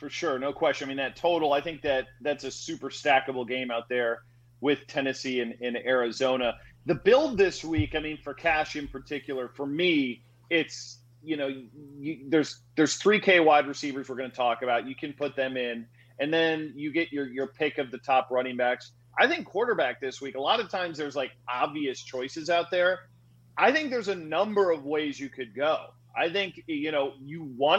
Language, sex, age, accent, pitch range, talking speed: English, male, 30-49, American, 125-165 Hz, 210 wpm